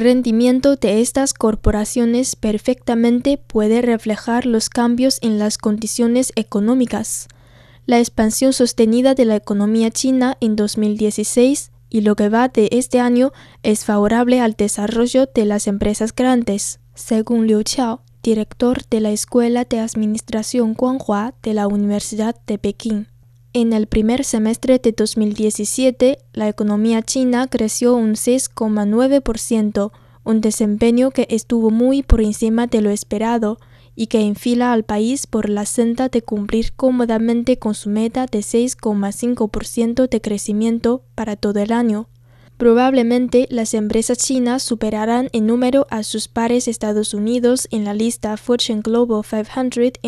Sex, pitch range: female, 215-245 Hz